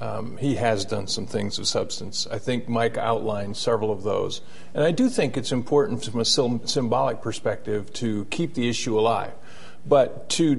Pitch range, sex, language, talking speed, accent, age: 110-140 Hz, male, English, 185 wpm, American, 50-69